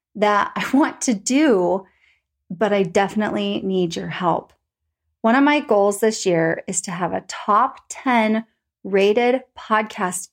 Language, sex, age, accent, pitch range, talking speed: English, female, 30-49, American, 205-275 Hz, 145 wpm